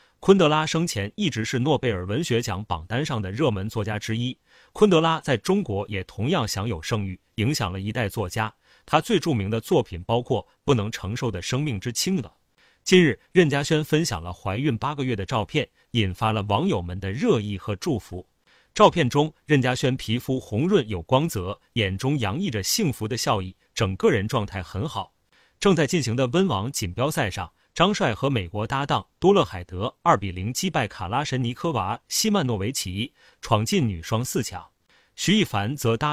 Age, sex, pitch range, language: 30-49, male, 105-150 Hz, Chinese